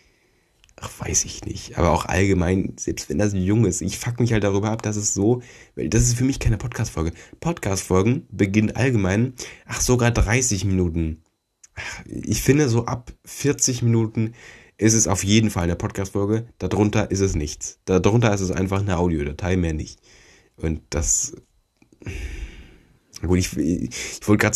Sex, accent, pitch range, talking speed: male, German, 85-105 Hz, 170 wpm